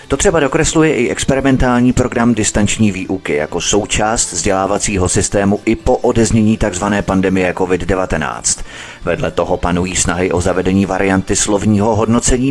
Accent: native